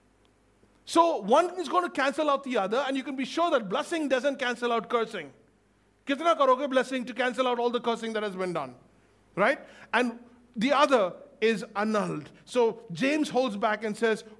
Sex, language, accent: male, English, Indian